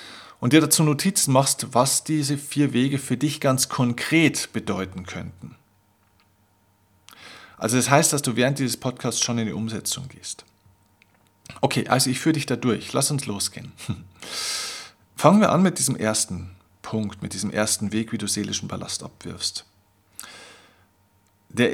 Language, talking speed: German, 150 wpm